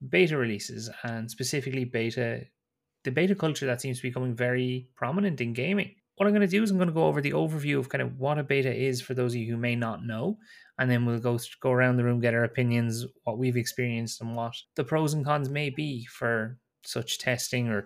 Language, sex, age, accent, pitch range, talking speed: English, male, 20-39, Irish, 120-140 Hz, 240 wpm